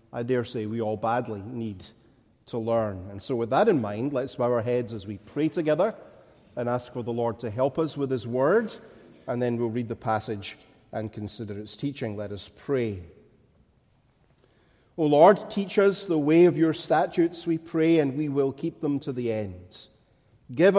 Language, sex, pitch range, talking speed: English, male, 115-155 Hz, 195 wpm